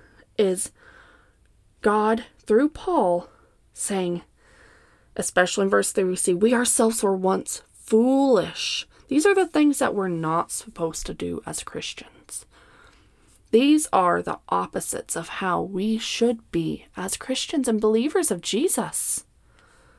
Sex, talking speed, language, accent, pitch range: female, 130 wpm, English, American, 190-295 Hz